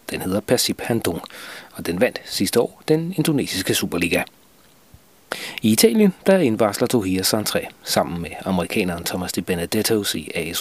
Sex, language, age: male, Danish, 40-59